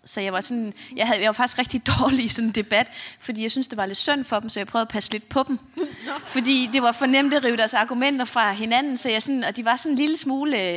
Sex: female